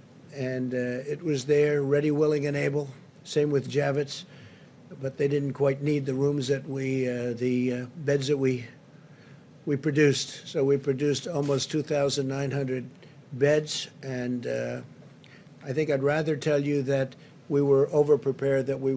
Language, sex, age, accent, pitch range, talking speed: English, male, 50-69, American, 135-150 Hz, 165 wpm